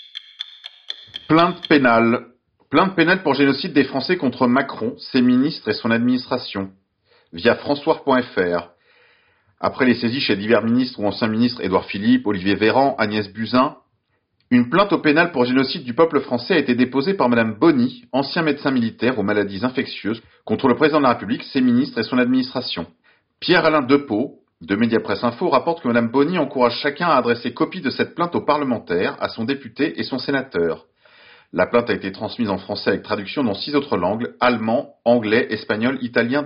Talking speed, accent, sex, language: 175 wpm, French, male, French